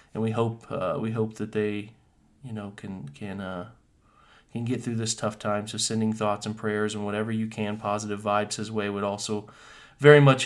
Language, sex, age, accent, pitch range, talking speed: English, male, 30-49, American, 110-120 Hz, 205 wpm